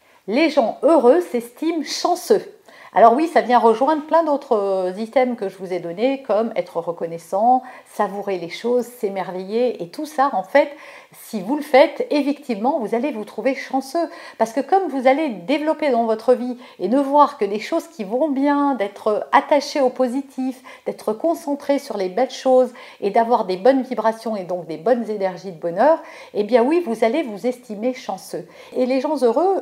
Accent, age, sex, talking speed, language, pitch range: French, 50-69, female, 185 wpm, French, 215-295 Hz